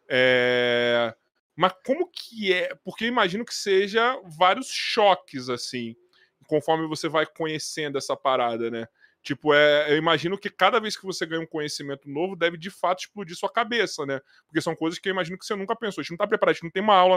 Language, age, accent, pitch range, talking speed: Portuguese, 20-39, Brazilian, 145-200 Hz, 205 wpm